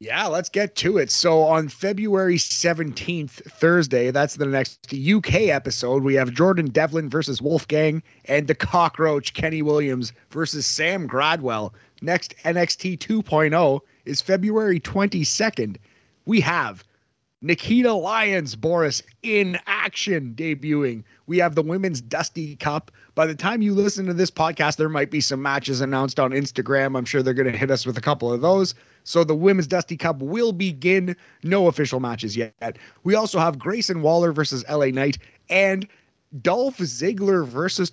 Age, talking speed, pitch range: 30-49, 160 wpm, 130-180 Hz